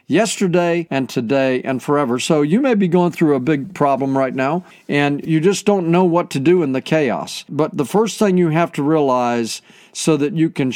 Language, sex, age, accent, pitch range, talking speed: English, male, 50-69, American, 135-175 Hz, 220 wpm